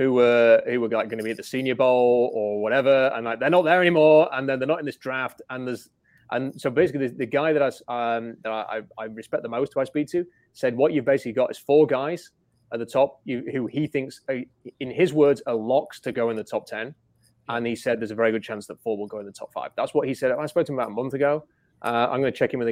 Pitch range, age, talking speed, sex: 115-140 Hz, 30-49, 295 wpm, male